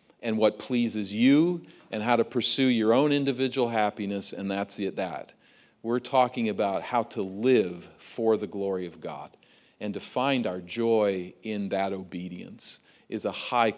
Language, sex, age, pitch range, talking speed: English, male, 40-59, 95-115 Hz, 160 wpm